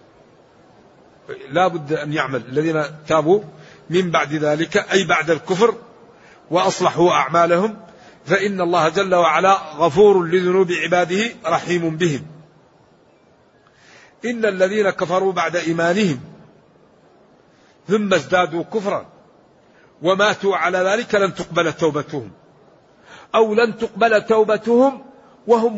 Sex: male